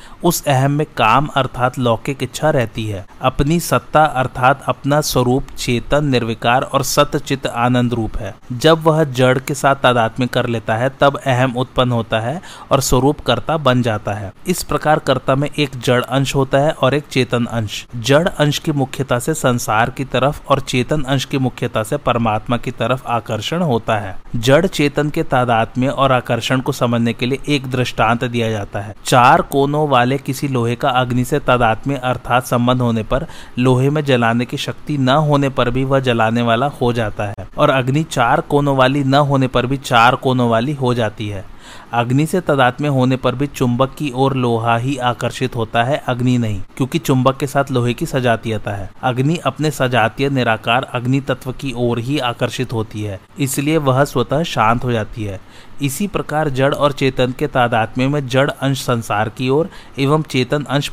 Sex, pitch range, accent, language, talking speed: male, 120-140 Hz, native, Hindi, 180 wpm